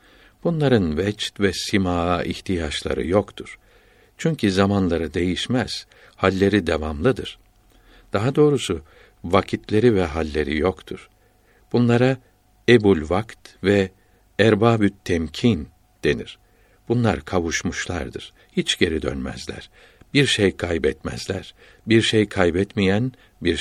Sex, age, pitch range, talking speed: male, 60-79, 90-110 Hz, 90 wpm